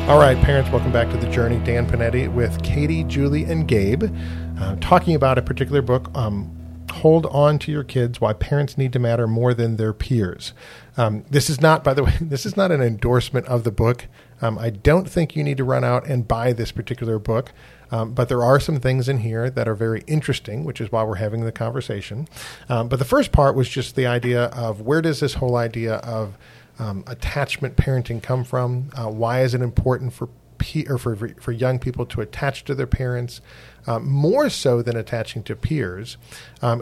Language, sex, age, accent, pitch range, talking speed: English, male, 40-59, American, 115-135 Hz, 210 wpm